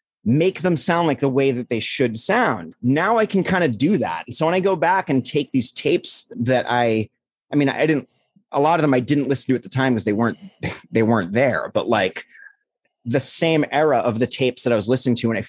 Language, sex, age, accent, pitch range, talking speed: English, male, 30-49, American, 115-150 Hz, 250 wpm